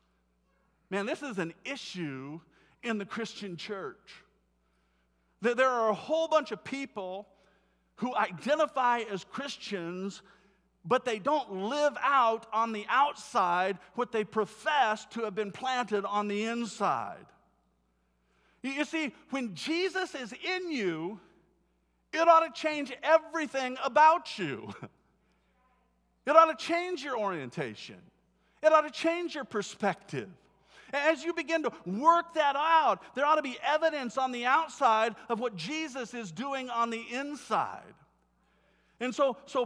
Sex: male